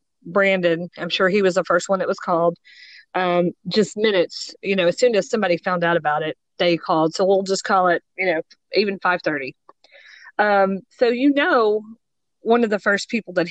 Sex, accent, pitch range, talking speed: female, American, 175-220 Hz, 200 wpm